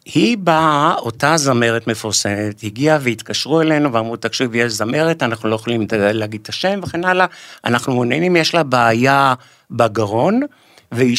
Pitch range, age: 115-160 Hz, 60-79